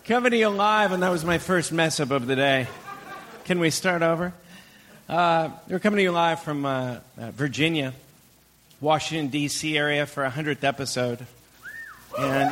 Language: English